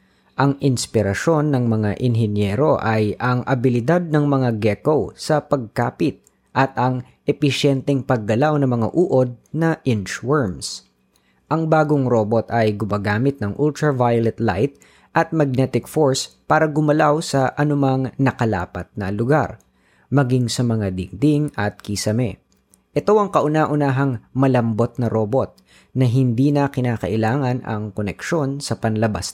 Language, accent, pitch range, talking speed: Filipino, native, 110-145 Hz, 125 wpm